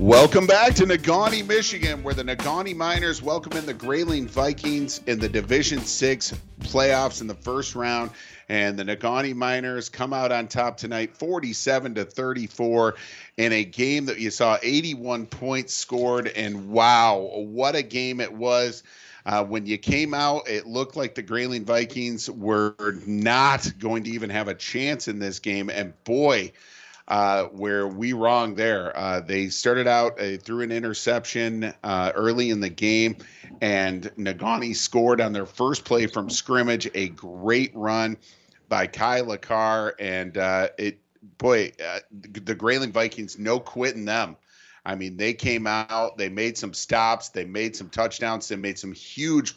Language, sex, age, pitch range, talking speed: English, male, 40-59, 105-125 Hz, 165 wpm